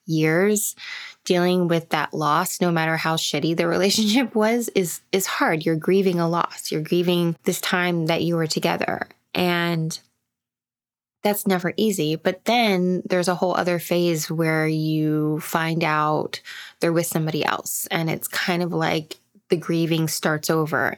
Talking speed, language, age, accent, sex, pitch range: 155 wpm, English, 20-39, American, female, 155-195 Hz